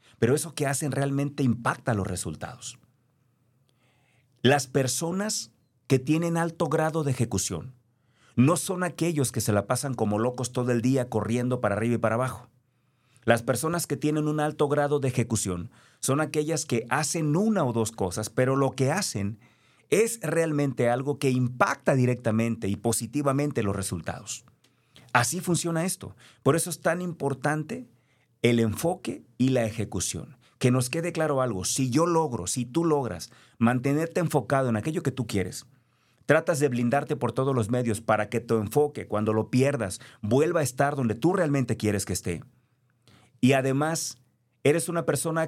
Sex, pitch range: male, 115-145 Hz